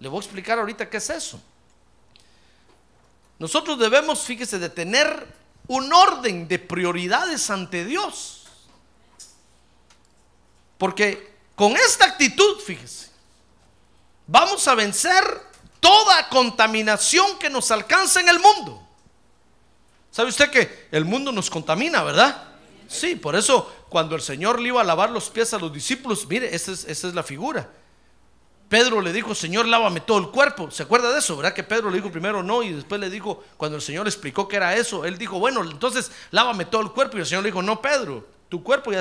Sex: male